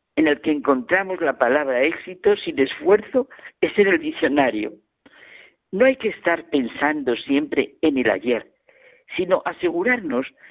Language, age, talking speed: Spanish, 50-69, 135 wpm